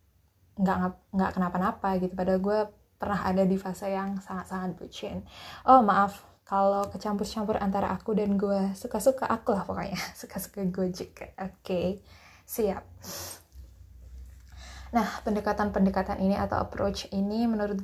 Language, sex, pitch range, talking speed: Indonesian, female, 180-205 Hz, 125 wpm